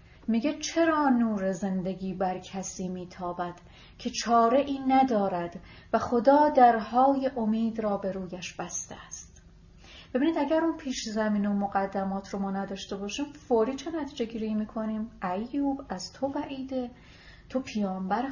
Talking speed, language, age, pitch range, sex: 140 wpm, Persian, 30-49, 195-270 Hz, female